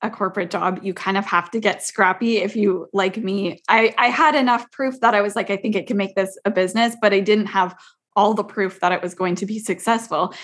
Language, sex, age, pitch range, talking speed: English, female, 20-39, 185-215 Hz, 260 wpm